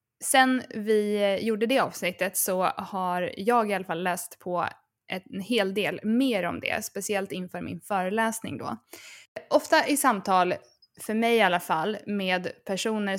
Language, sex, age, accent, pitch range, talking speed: Swedish, female, 20-39, native, 180-220 Hz, 155 wpm